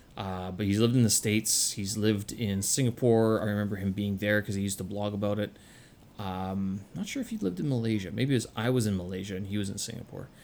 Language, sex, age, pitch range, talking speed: English, male, 30-49, 105-130 Hz, 245 wpm